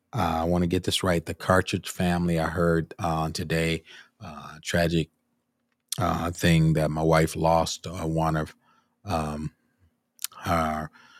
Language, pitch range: English, 75-85 Hz